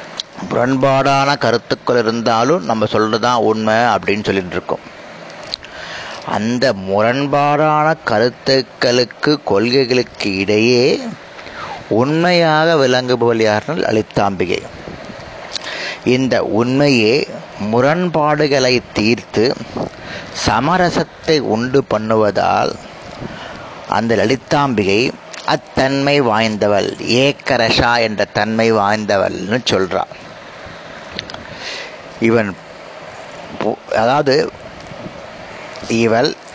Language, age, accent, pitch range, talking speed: Tamil, 30-49, native, 110-140 Hz, 60 wpm